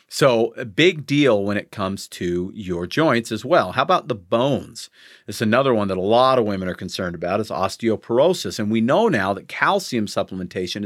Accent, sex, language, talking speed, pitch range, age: American, male, English, 200 wpm, 105-135 Hz, 40-59